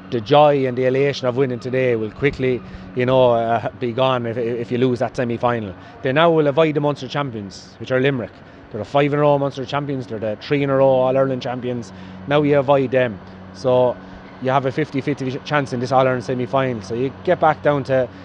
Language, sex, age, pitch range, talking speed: English, male, 20-39, 105-135 Hz, 200 wpm